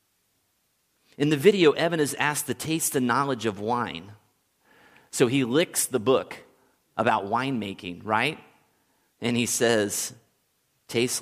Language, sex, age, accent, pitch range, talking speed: English, male, 30-49, American, 110-150 Hz, 130 wpm